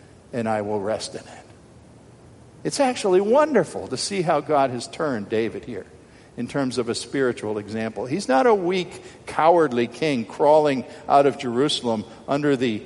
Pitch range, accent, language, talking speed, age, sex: 115-140 Hz, American, English, 165 wpm, 50-69, male